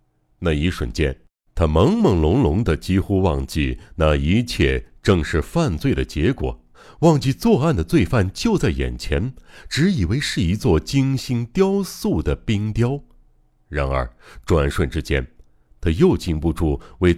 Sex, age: male, 60-79